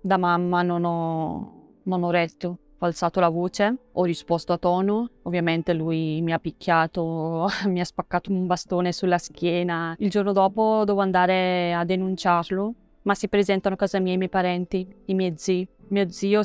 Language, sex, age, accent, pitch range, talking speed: Italian, female, 20-39, native, 175-195 Hz, 170 wpm